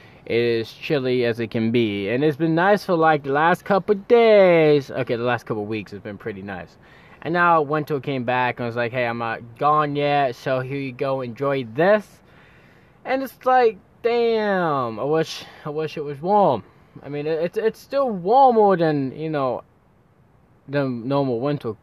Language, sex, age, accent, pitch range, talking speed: English, male, 20-39, American, 130-160 Hz, 195 wpm